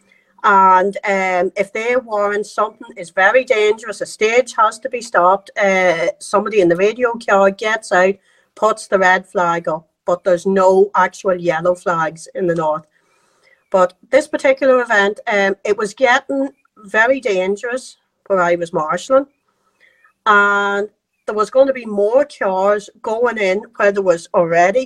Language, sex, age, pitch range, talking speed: English, female, 40-59, 190-255 Hz, 155 wpm